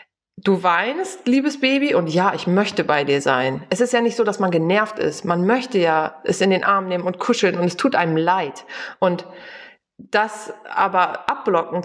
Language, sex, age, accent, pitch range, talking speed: German, female, 30-49, German, 175-220 Hz, 200 wpm